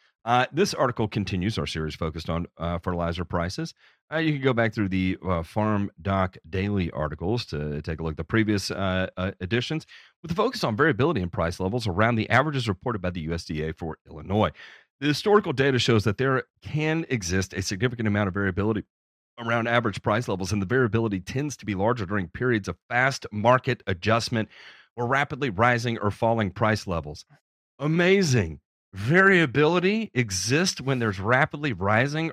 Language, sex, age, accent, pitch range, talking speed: English, male, 40-59, American, 90-125 Hz, 175 wpm